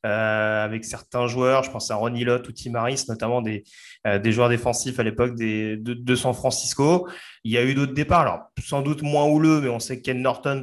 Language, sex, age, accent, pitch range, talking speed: French, male, 20-39, French, 115-140 Hz, 230 wpm